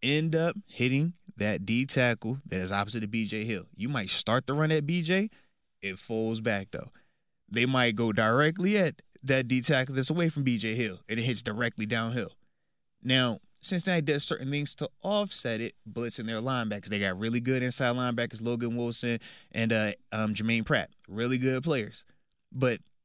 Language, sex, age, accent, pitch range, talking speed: English, male, 20-39, American, 110-135 Hz, 175 wpm